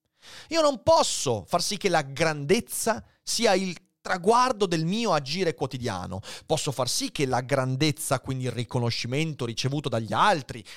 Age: 30-49